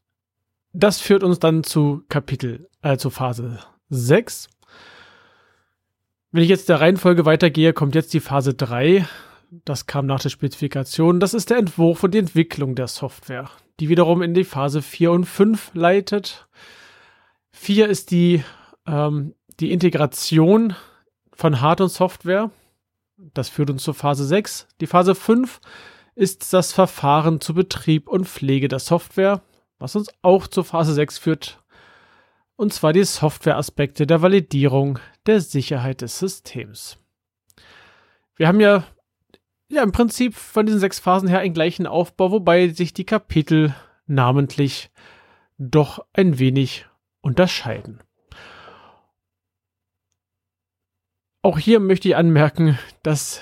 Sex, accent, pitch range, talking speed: male, German, 135-185 Hz, 135 wpm